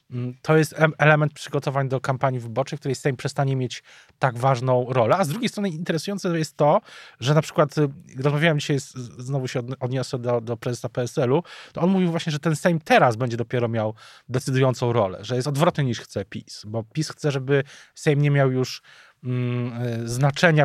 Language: Polish